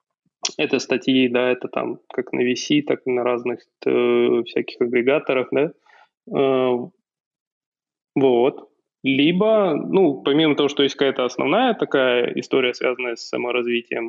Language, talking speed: Russian, 130 wpm